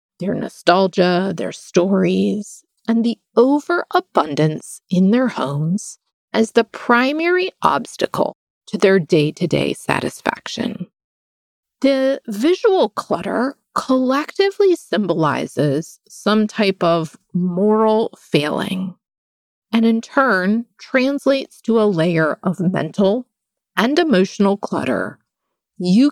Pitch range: 185-255 Hz